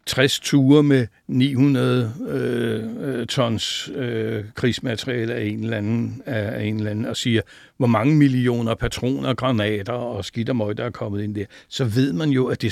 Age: 60-79